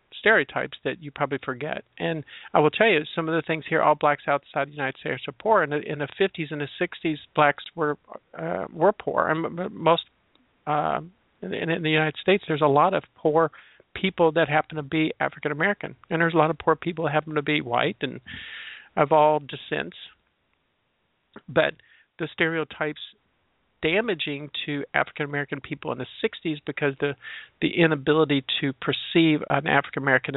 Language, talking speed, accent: English, 180 wpm, American